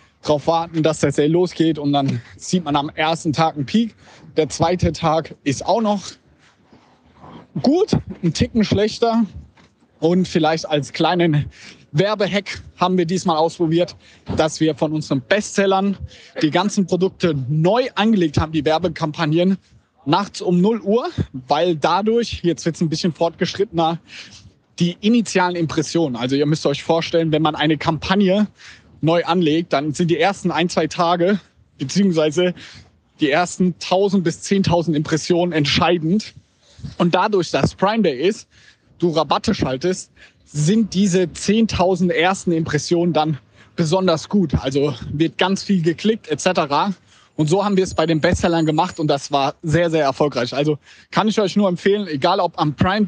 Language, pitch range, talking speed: German, 155-190 Hz, 155 wpm